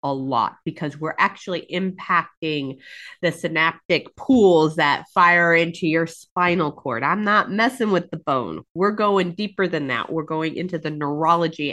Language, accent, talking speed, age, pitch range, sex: English, American, 160 wpm, 30-49, 145-200 Hz, female